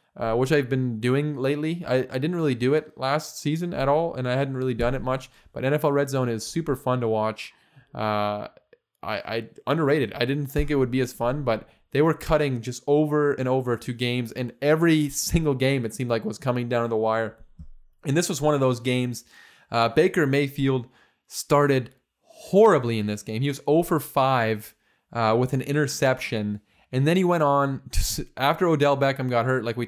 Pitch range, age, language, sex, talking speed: 120-150 Hz, 20-39, English, male, 210 wpm